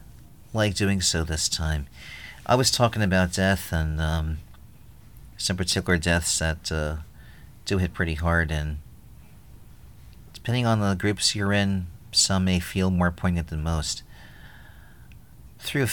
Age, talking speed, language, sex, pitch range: 40-59, 135 wpm, English, male, 80-105 Hz